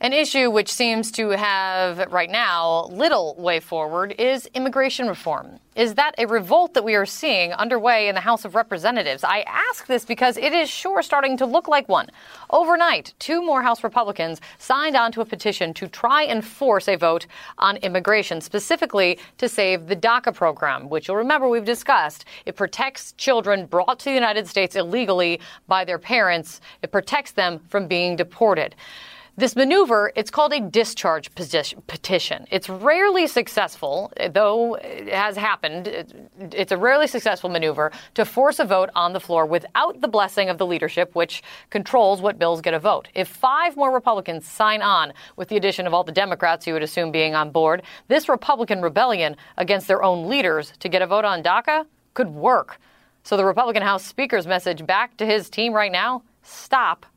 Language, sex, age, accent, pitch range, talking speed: English, female, 30-49, American, 180-250 Hz, 180 wpm